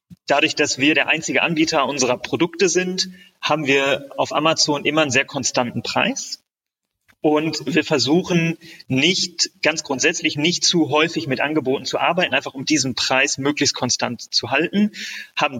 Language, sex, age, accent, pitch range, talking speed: German, male, 30-49, German, 130-160 Hz, 155 wpm